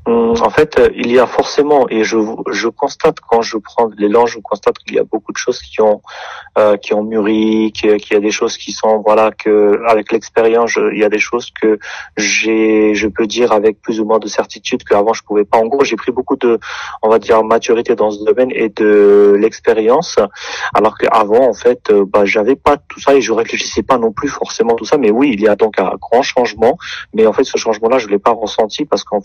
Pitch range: 105-150 Hz